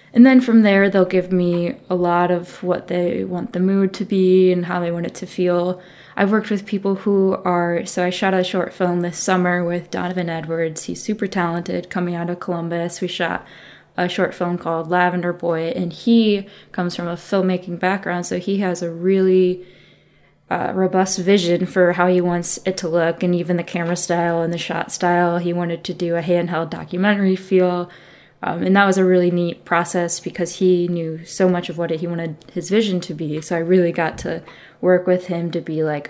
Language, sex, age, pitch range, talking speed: English, female, 20-39, 170-185 Hz, 210 wpm